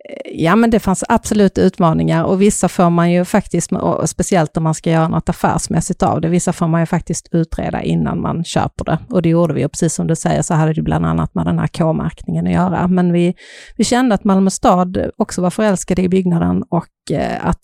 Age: 40-59